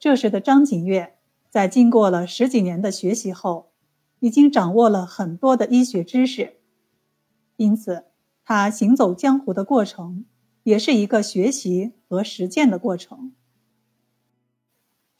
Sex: female